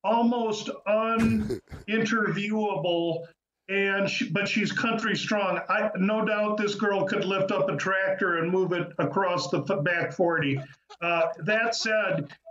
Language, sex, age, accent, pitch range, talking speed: English, male, 50-69, American, 185-210 Hz, 135 wpm